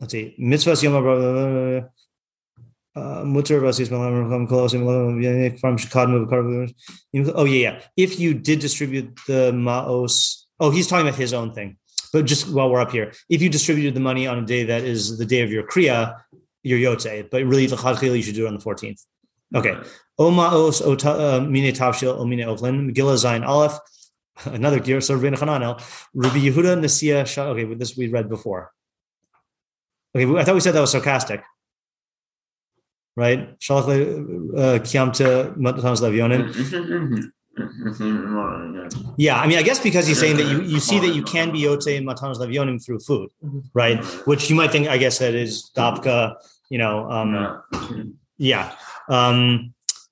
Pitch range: 120-145 Hz